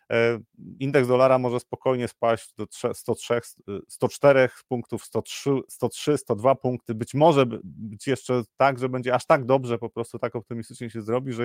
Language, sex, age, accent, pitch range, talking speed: Polish, male, 40-59, native, 110-130 Hz, 155 wpm